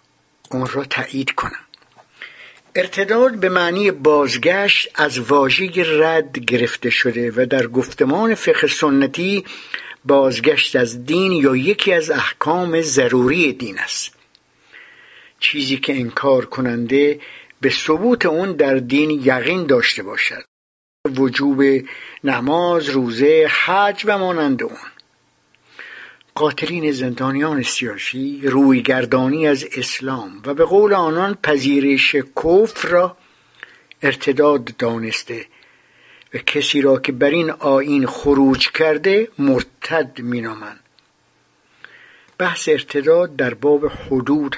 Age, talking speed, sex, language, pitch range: 60-79, 110 wpm, male, English, 130-175 Hz